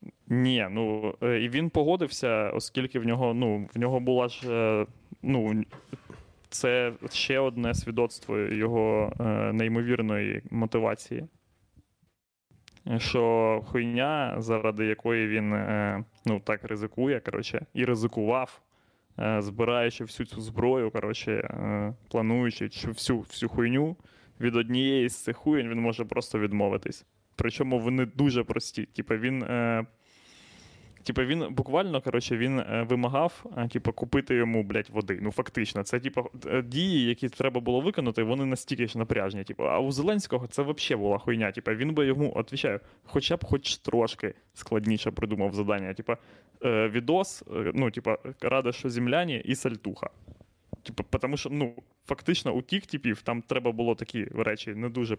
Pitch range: 110-125 Hz